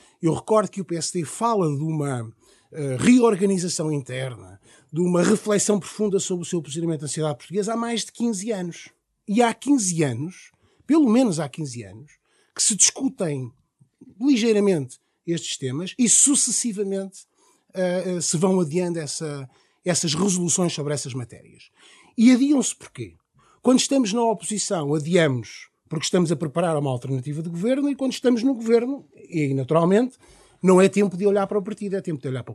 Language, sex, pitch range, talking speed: Portuguese, male, 150-230 Hz, 160 wpm